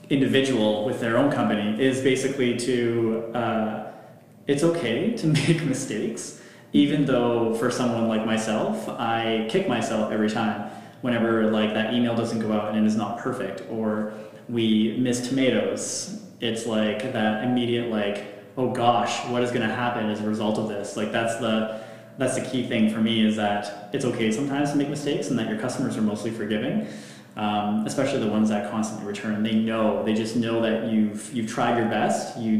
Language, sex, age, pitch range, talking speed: English, male, 20-39, 110-125 Hz, 185 wpm